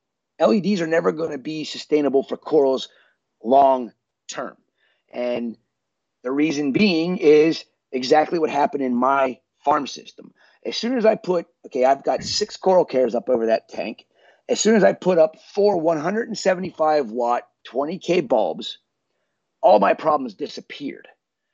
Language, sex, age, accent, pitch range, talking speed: English, male, 30-49, American, 130-175 Hz, 150 wpm